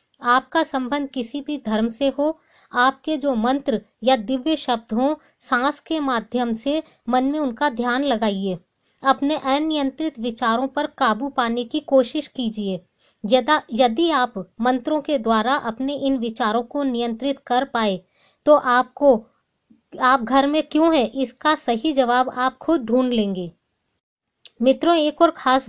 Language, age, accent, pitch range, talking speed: Hindi, 20-39, native, 245-290 Hz, 145 wpm